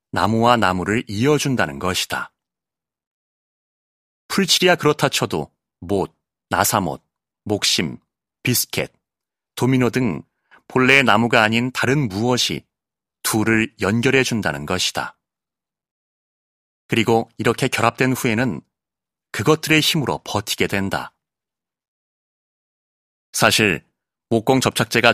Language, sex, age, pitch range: Korean, male, 30-49, 100-130 Hz